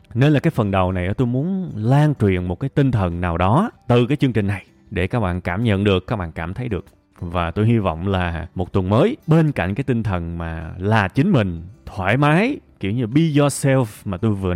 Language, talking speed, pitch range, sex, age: Vietnamese, 240 wpm, 95-130 Hz, male, 20-39